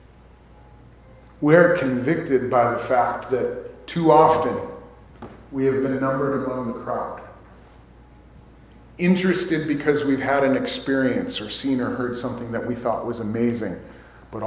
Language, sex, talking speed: English, male, 135 wpm